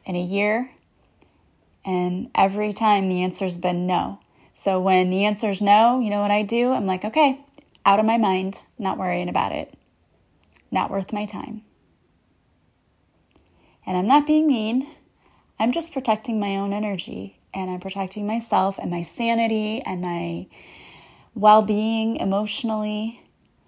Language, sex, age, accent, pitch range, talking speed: English, female, 20-39, American, 190-220 Hz, 145 wpm